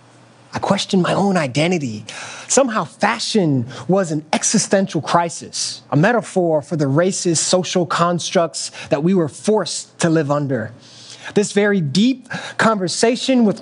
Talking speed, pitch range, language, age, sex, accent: 130 wpm, 140-205 Hz, English, 20-39, male, American